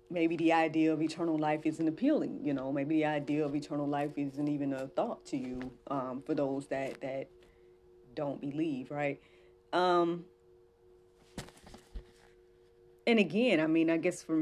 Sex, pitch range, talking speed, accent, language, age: female, 120-155 Hz, 160 wpm, American, English, 30-49